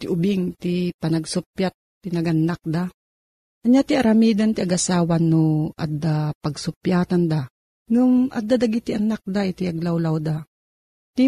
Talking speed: 140 wpm